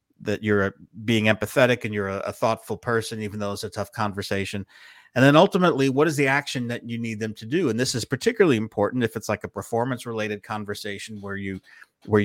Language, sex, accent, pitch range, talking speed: English, male, American, 100-125 Hz, 210 wpm